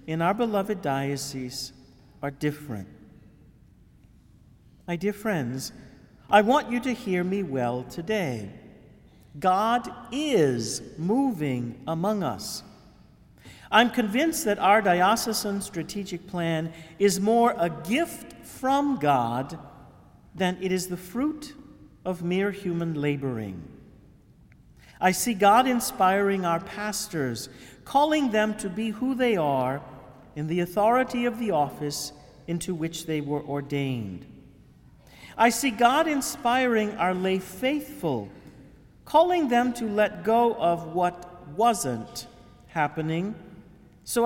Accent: American